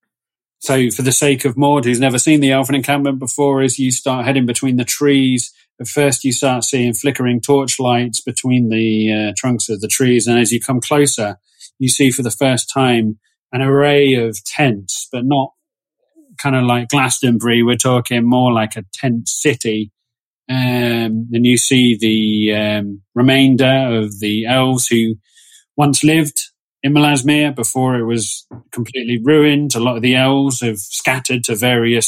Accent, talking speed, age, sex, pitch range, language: British, 170 wpm, 30-49, male, 115-135 Hz, English